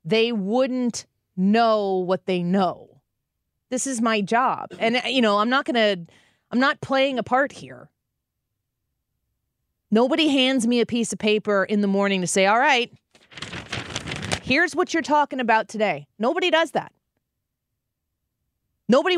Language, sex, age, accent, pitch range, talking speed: English, female, 30-49, American, 190-250 Hz, 145 wpm